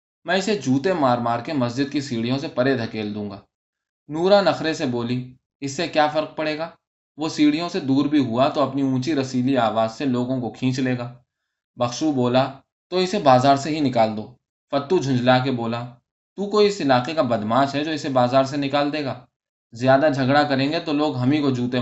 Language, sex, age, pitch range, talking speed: Urdu, male, 20-39, 120-150 Hz, 215 wpm